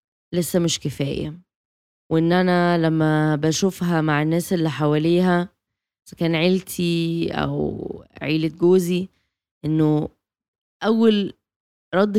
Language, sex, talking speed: Arabic, female, 95 wpm